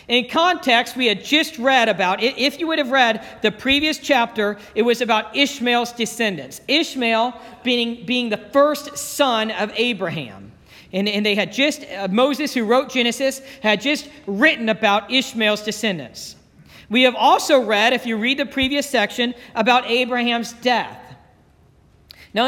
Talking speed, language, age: 150 wpm, English, 50-69